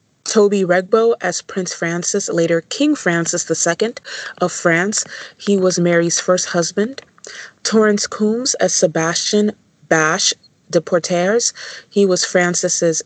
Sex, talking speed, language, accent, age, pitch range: female, 120 wpm, English, American, 20-39, 170-205 Hz